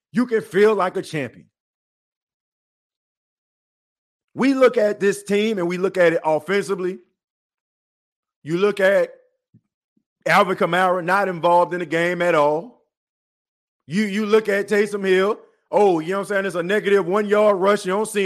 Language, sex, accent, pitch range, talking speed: English, male, American, 195-280 Hz, 160 wpm